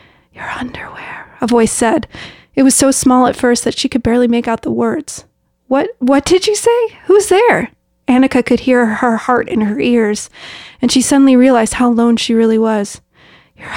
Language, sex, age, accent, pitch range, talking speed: English, female, 30-49, American, 225-260 Hz, 190 wpm